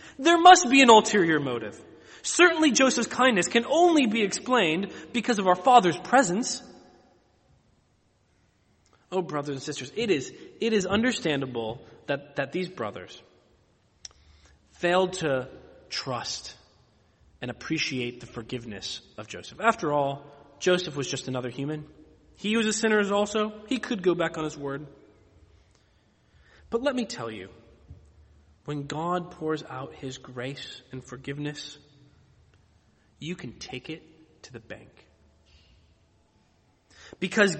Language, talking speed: English, 130 wpm